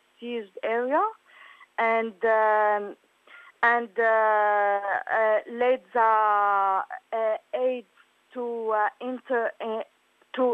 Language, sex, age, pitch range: English, female, 40-59, 225-255 Hz